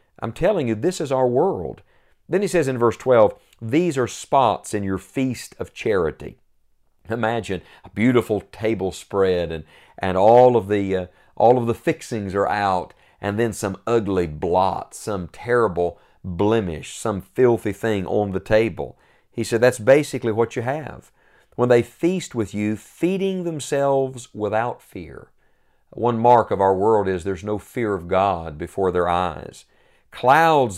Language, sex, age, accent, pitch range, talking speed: English, male, 50-69, American, 100-125 Hz, 160 wpm